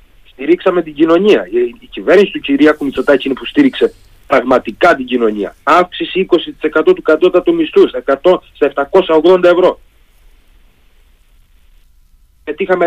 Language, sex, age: Greek, male, 40-59